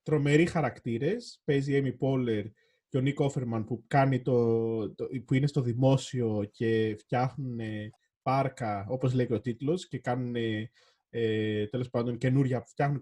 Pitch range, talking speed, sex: 125-160 Hz, 120 wpm, male